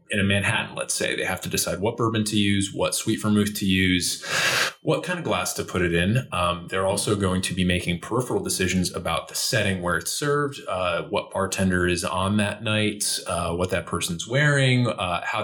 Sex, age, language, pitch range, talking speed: male, 20-39, English, 90-110 Hz, 215 wpm